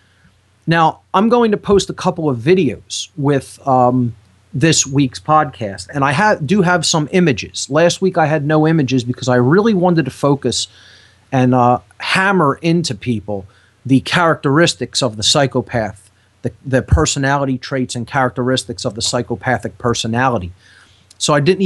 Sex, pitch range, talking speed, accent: male, 115-155 Hz, 150 wpm, American